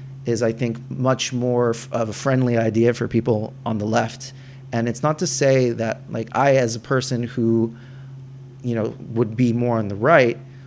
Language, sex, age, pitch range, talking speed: English, male, 30-49, 110-130 Hz, 190 wpm